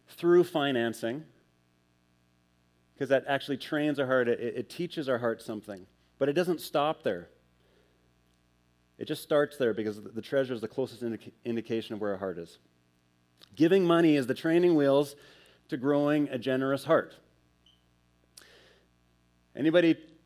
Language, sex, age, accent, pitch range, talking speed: English, male, 30-49, American, 95-150 Hz, 140 wpm